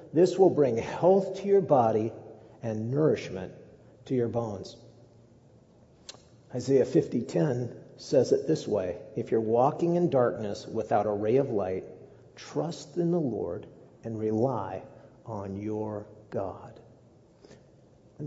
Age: 50-69